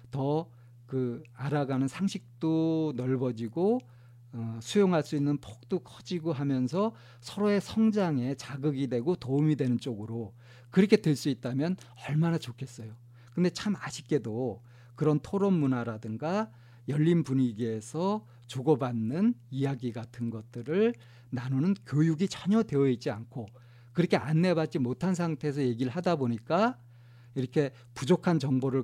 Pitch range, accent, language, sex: 120-160 Hz, native, Korean, male